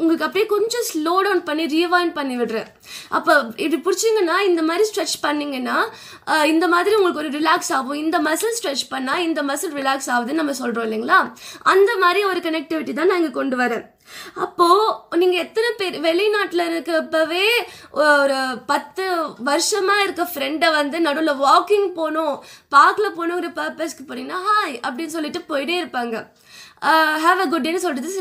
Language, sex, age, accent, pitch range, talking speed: English, female, 20-39, Indian, 295-375 Hz, 130 wpm